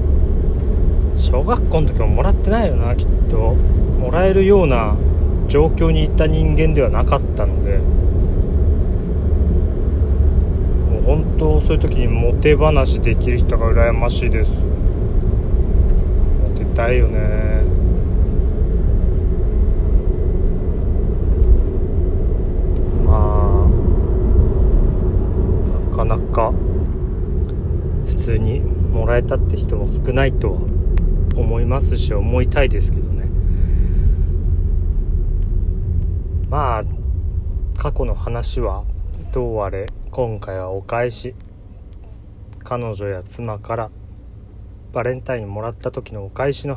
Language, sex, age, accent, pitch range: Japanese, male, 30-49, native, 80-105 Hz